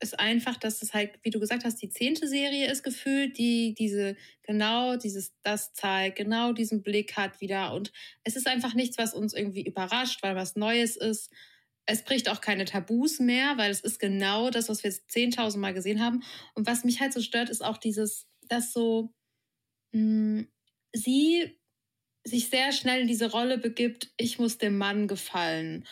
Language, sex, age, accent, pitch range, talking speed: German, female, 20-39, German, 210-250 Hz, 185 wpm